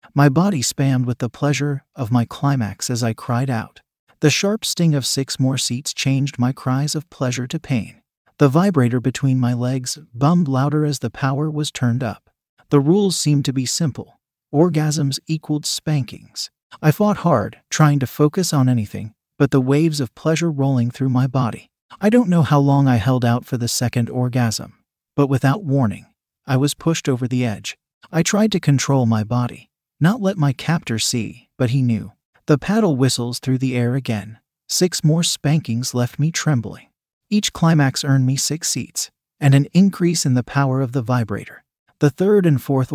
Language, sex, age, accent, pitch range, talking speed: English, male, 40-59, American, 125-150 Hz, 185 wpm